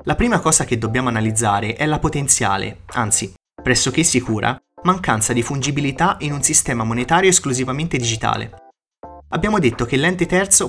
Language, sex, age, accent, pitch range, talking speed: Italian, male, 30-49, native, 115-150 Hz, 145 wpm